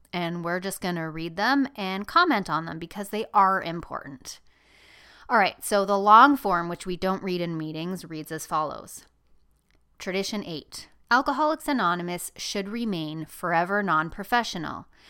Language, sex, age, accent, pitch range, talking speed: English, female, 30-49, American, 160-200 Hz, 150 wpm